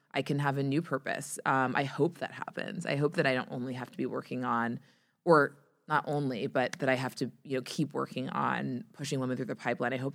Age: 20-39